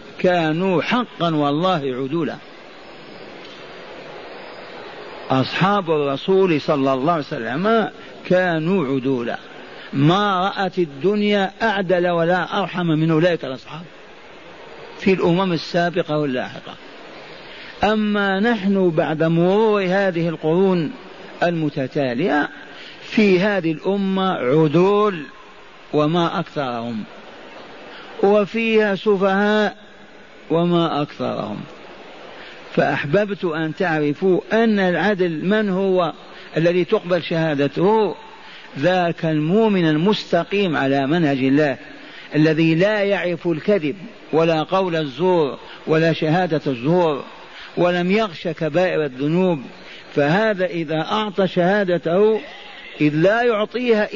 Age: 50-69